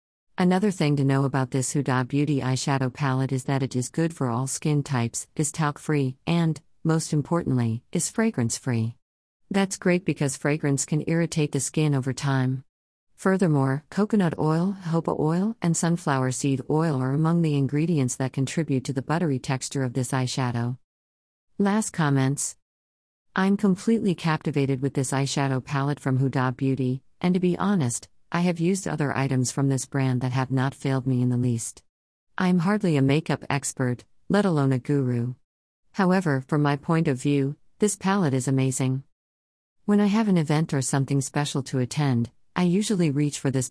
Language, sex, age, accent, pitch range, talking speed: English, female, 50-69, American, 130-160 Hz, 170 wpm